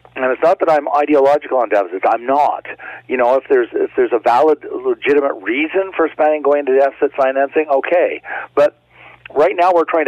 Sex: male